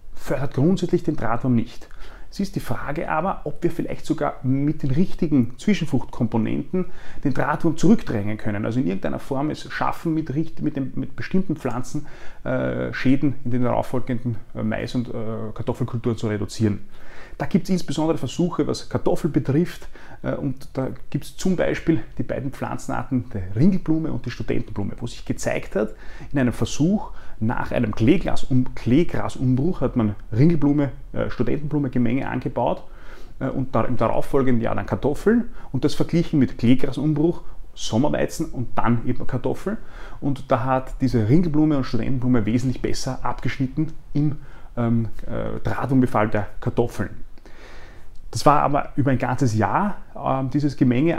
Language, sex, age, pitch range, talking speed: German, male, 30-49, 120-150 Hz, 150 wpm